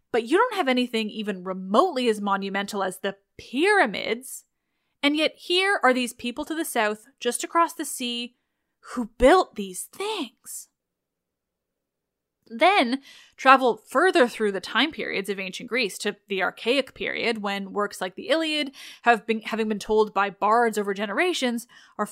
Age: 10-29